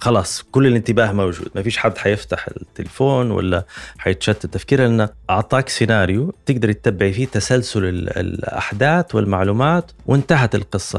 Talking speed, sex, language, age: 125 wpm, male, Arabic, 30-49